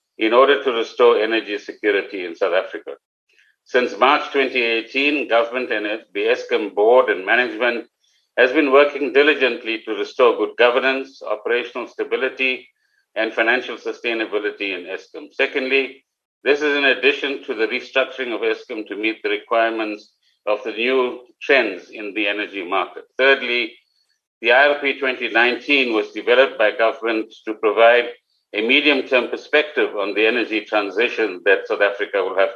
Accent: Indian